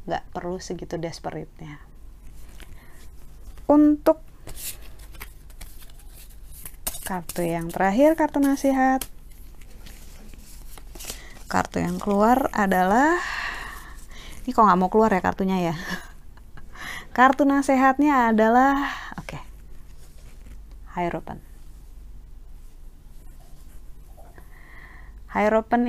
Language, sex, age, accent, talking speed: Indonesian, female, 20-39, native, 65 wpm